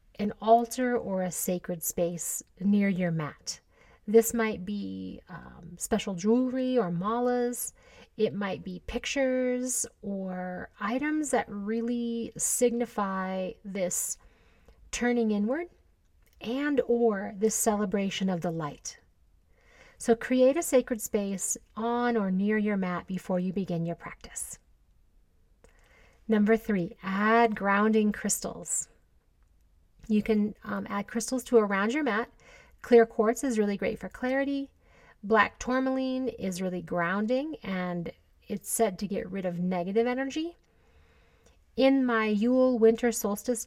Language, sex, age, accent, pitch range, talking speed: English, female, 40-59, American, 185-235 Hz, 125 wpm